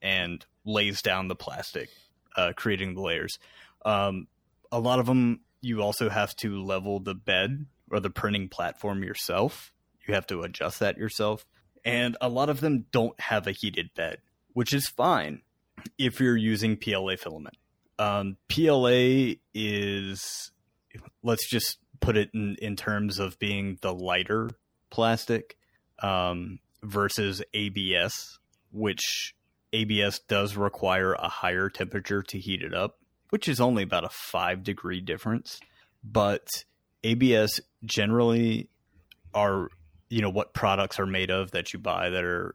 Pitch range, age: 95-115 Hz, 30-49